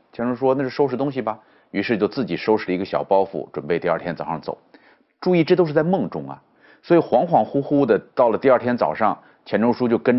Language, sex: Chinese, male